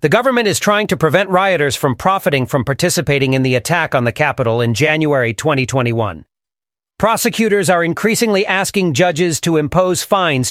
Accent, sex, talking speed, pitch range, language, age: American, male, 160 wpm, 140-190 Hz, English, 40-59